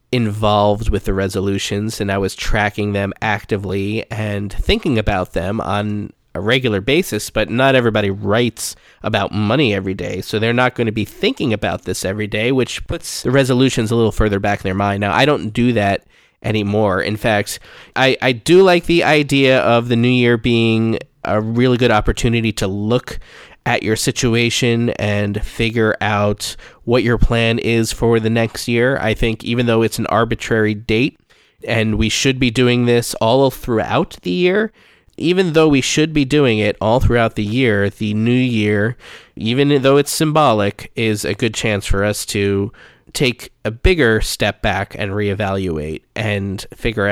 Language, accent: English, American